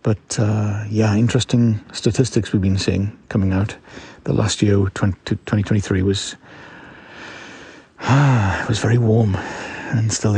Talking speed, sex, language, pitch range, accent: 140 wpm, male, English, 100-115 Hz, British